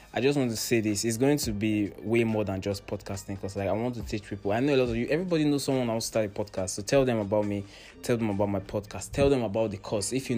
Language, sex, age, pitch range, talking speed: English, male, 20-39, 100-115 Hz, 295 wpm